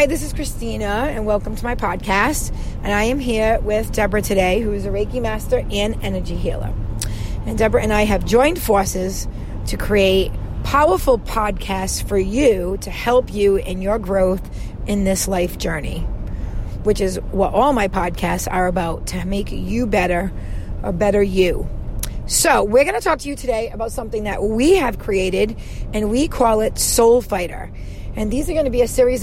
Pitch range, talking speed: 190-250 Hz, 185 wpm